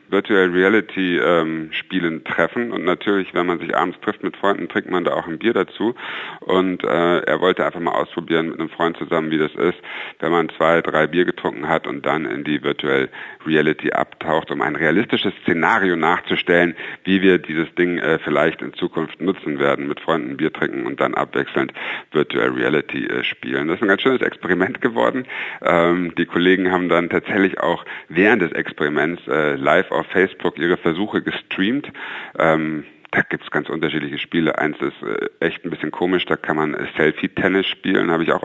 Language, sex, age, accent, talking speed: German, male, 60-79, German, 180 wpm